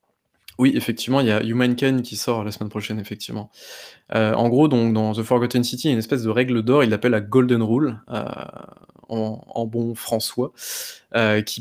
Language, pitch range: French, 110-135 Hz